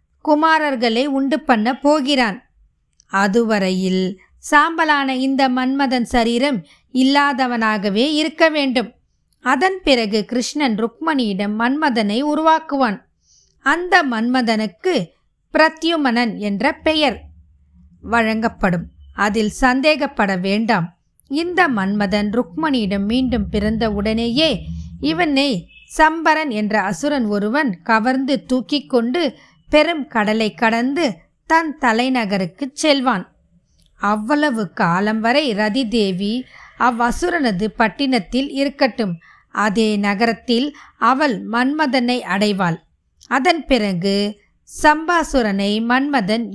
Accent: native